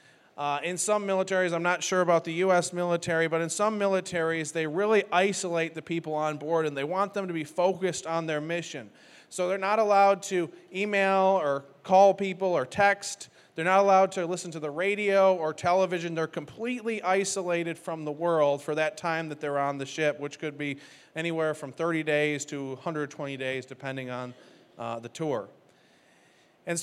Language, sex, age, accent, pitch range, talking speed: English, male, 30-49, American, 160-190 Hz, 185 wpm